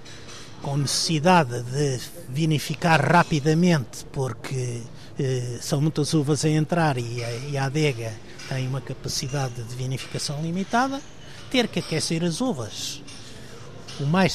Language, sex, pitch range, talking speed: Portuguese, male, 120-165 Hz, 120 wpm